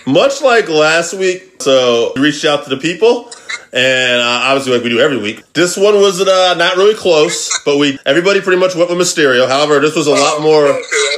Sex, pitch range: male, 135-180 Hz